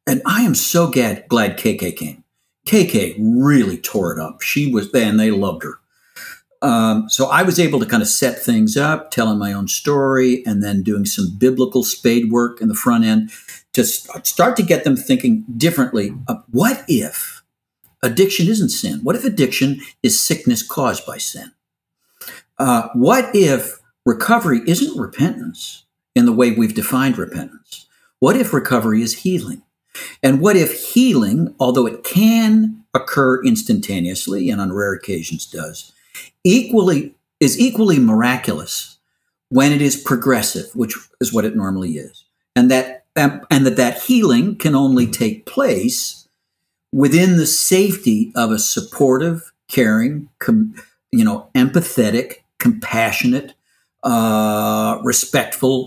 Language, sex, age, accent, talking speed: English, male, 60-79, American, 145 wpm